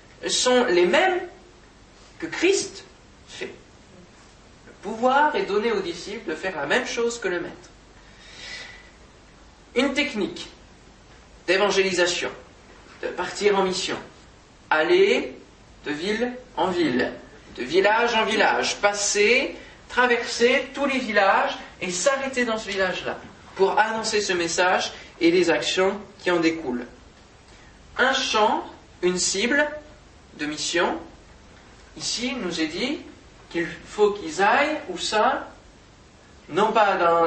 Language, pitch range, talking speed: French, 180-265 Hz, 120 wpm